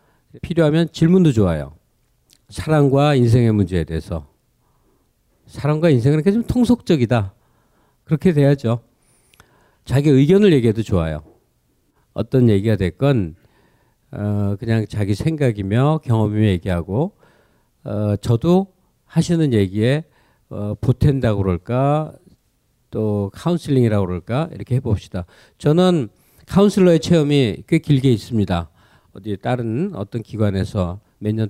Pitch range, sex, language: 105-140 Hz, male, Korean